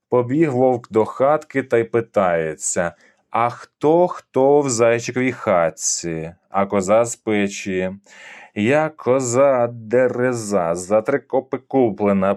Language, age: Ukrainian, 20-39